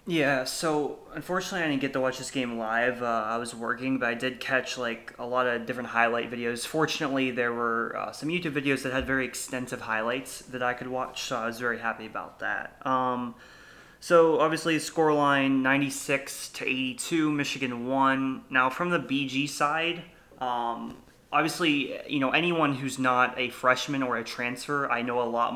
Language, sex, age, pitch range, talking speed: English, male, 20-39, 120-135 Hz, 185 wpm